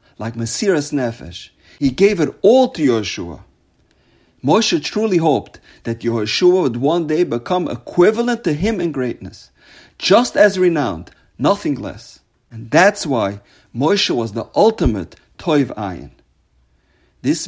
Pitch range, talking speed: 115-165 Hz, 130 wpm